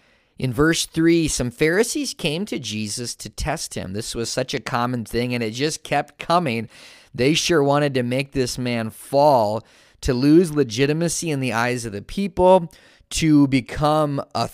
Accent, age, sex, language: American, 30-49, male, English